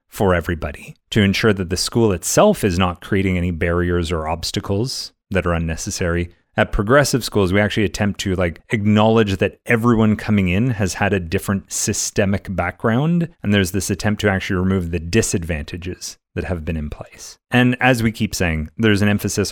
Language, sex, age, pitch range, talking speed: English, male, 30-49, 90-115 Hz, 180 wpm